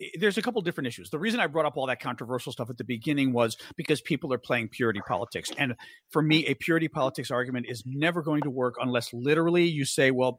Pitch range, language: 130-175 Hz, English